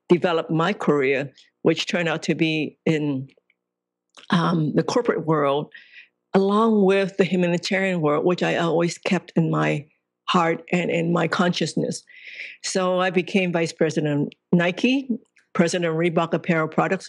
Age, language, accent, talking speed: 50-69, English, American, 145 wpm